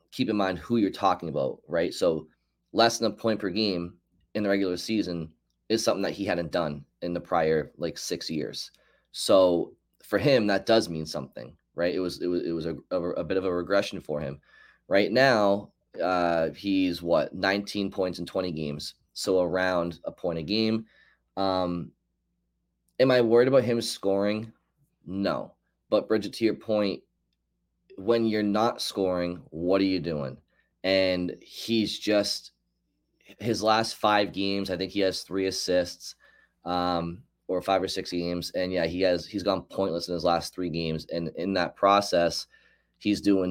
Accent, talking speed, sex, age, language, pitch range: American, 175 wpm, male, 20-39, English, 85-100 Hz